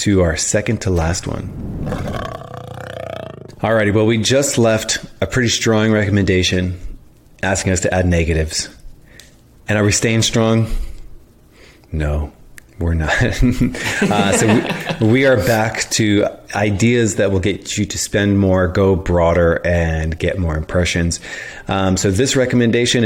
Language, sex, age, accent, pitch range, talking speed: English, male, 30-49, American, 90-115 Hz, 140 wpm